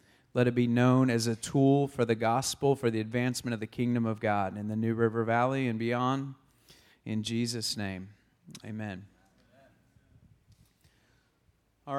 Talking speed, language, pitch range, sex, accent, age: 150 wpm, English, 115-130 Hz, male, American, 30-49